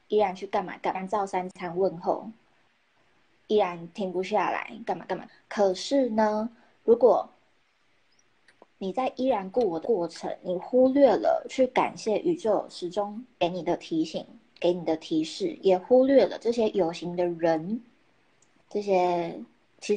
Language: Chinese